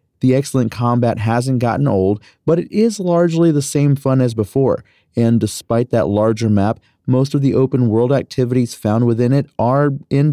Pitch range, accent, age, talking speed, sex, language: 115-140 Hz, American, 30-49, 175 wpm, male, English